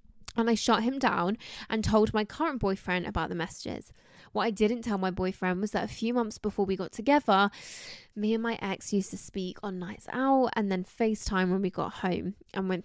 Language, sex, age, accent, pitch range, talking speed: English, female, 10-29, British, 185-230 Hz, 220 wpm